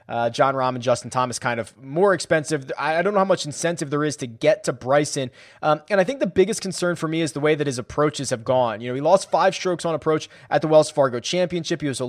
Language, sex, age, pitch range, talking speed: English, male, 20-39, 145-180 Hz, 275 wpm